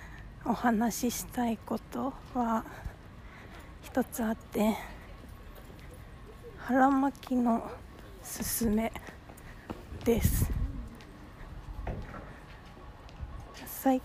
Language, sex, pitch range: Japanese, female, 210-250 Hz